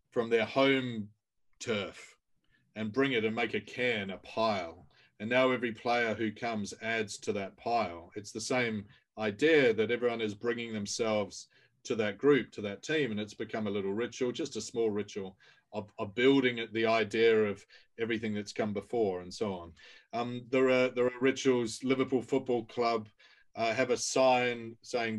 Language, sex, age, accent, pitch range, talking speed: English, male, 40-59, Australian, 105-125 Hz, 180 wpm